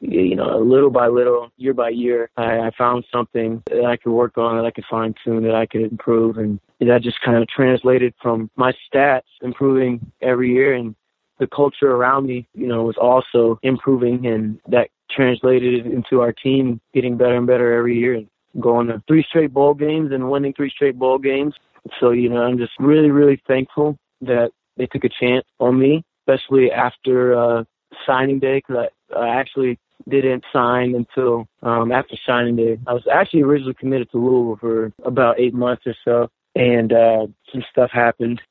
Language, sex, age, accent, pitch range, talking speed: English, male, 20-39, American, 115-130 Hz, 190 wpm